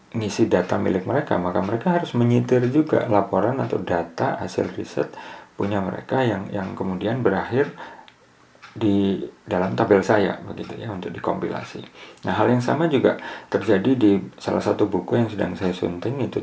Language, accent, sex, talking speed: Indonesian, native, male, 155 wpm